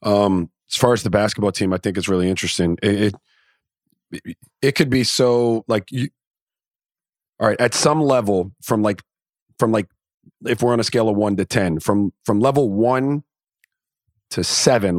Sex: male